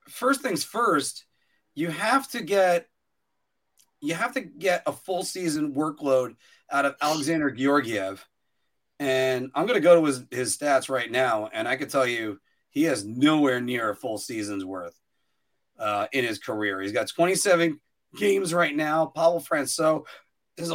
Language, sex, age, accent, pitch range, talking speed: English, male, 30-49, American, 125-175 Hz, 160 wpm